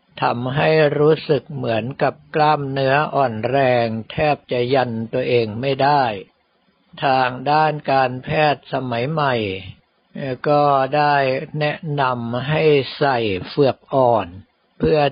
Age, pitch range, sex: 60-79, 125-150 Hz, male